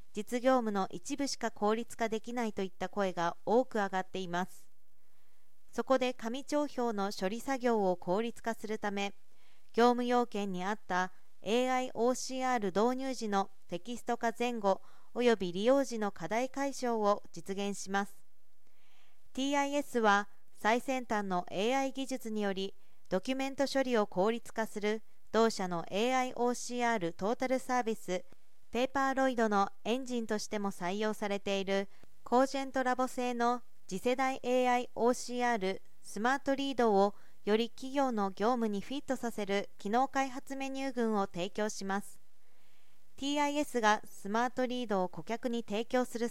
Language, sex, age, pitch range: Japanese, female, 40-59, 200-255 Hz